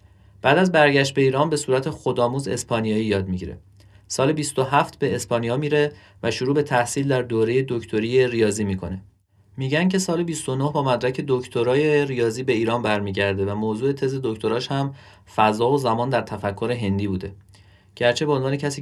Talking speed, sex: 165 wpm, male